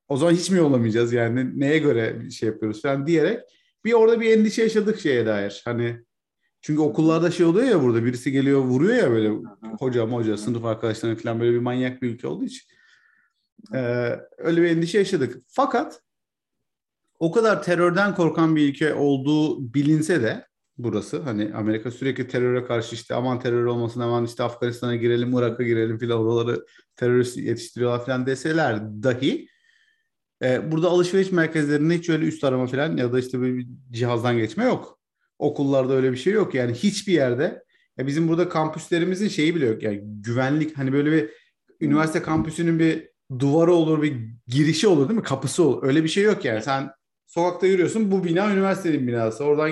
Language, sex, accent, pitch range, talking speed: Turkish, male, native, 120-170 Hz, 170 wpm